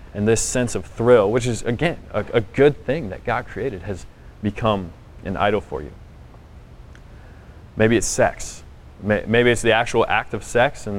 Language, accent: English, American